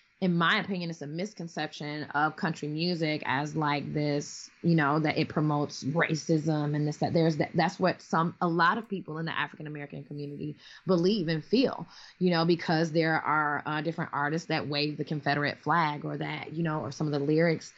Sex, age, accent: female, 20-39, American